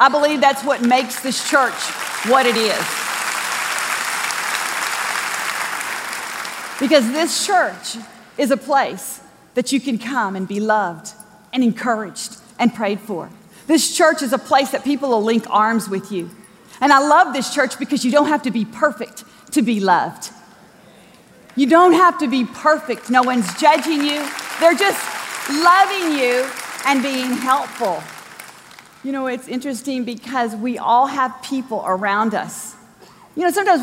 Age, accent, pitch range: 40-59, American, 210-275 Hz